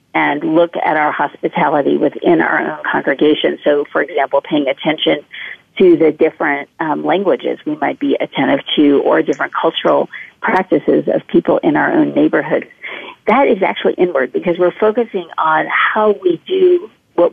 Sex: female